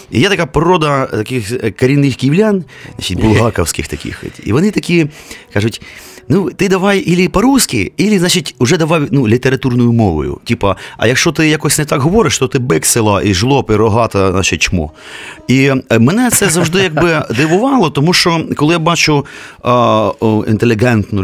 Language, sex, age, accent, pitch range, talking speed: Ukrainian, male, 30-49, native, 100-150 Hz, 155 wpm